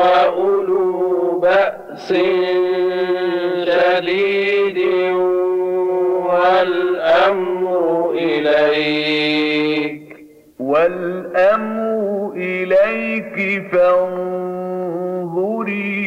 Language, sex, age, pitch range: Arabic, male, 50-69, 180-195 Hz